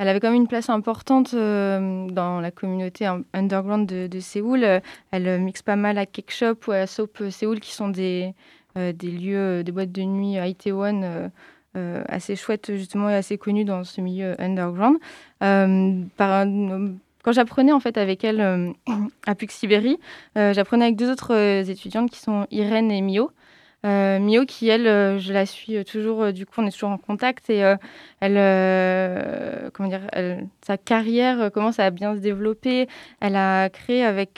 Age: 20-39